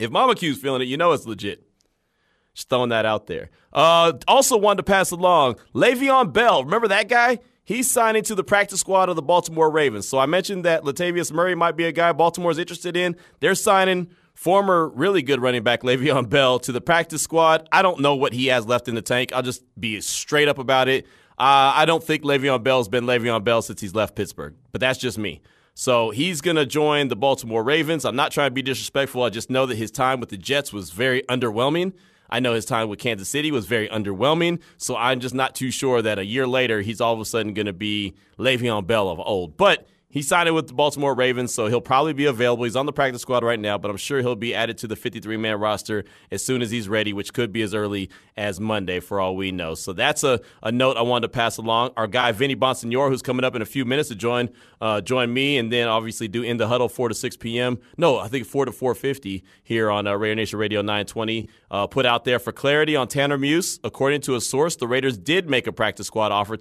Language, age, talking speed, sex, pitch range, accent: English, 30-49, 245 wpm, male, 110-150 Hz, American